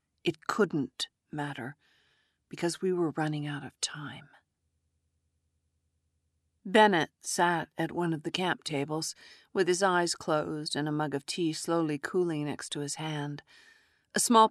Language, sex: English, female